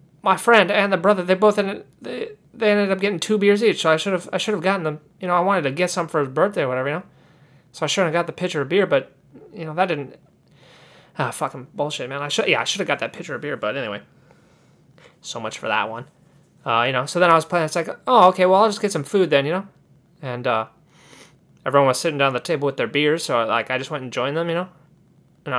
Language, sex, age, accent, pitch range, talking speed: English, male, 20-39, American, 135-185 Hz, 280 wpm